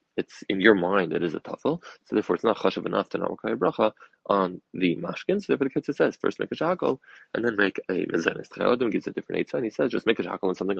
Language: English